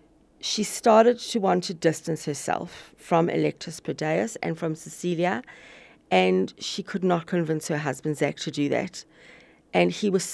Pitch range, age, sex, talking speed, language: 160-205 Hz, 40-59, female, 155 wpm, English